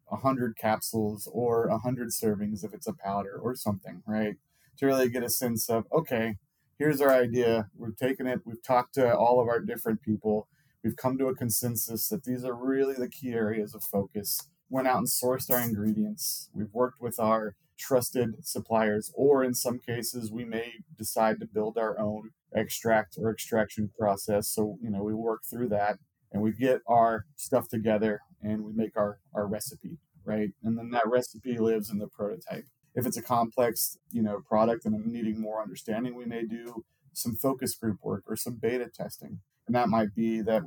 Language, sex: English, male